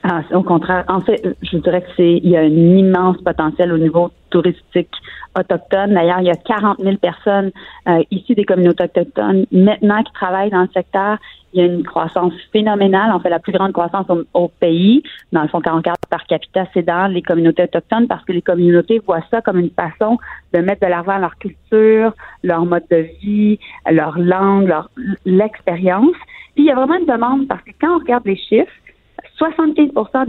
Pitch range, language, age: 175-215 Hz, French, 40-59